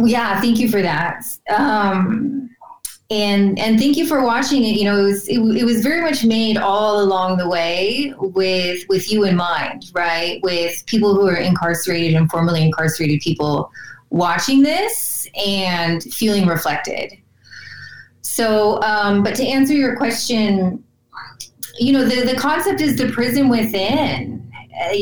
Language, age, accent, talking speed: English, 30-49, American, 155 wpm